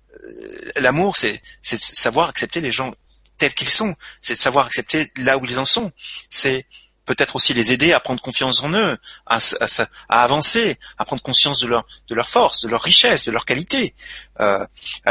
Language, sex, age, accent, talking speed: French, male, 40-59, French, 185 wpm